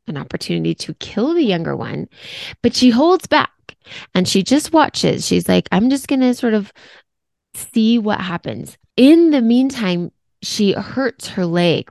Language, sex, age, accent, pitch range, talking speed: English, female, 20-39, American, 175-225 Hz, 165 wpm